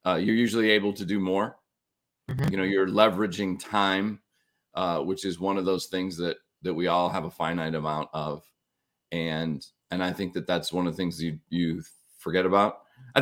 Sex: male